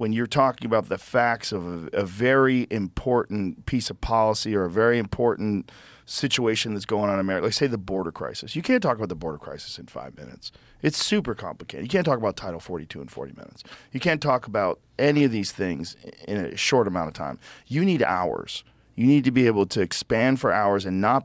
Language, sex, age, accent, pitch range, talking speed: English, male, 40-59, American, 100-125 Hz, 225 wpm